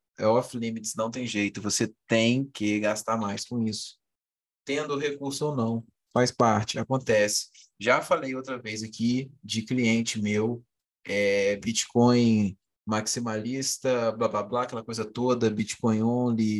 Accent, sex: Brazilian, male